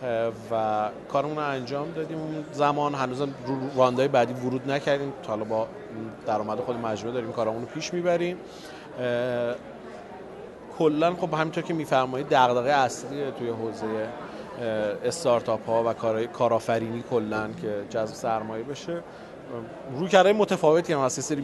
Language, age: Persian, 30-49